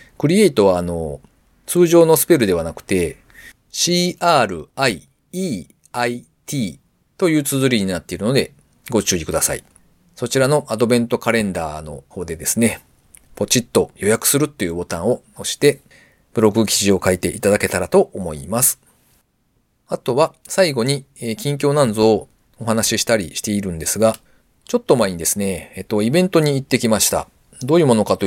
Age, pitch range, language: 40-59, 95-145 Hz, Japanese